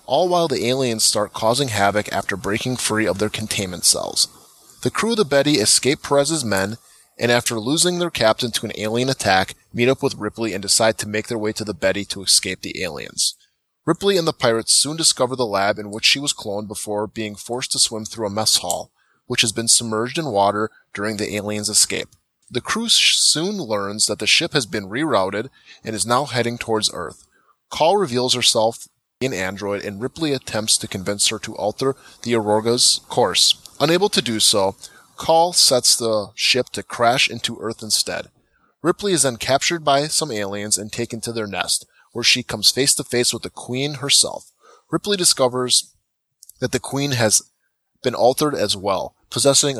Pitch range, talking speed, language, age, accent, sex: 105-135 Hz, 190 wpm, English, 20-39, American, male